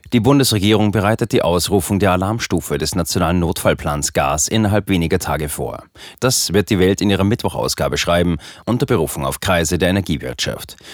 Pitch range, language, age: 85-110 Hz, German, 30-49